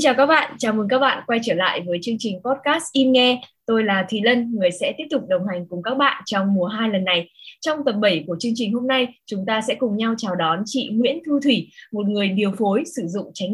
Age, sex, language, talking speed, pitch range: 20-39, female, Vietnamese, 270 wpm, 195-270 Hz